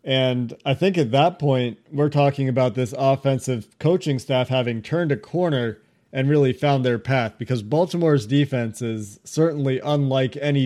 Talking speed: 165 wpm